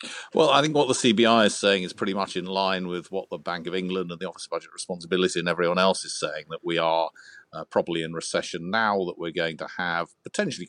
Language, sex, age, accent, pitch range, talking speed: English, male, 50-69, British, 85-100 Hz, 245 wpm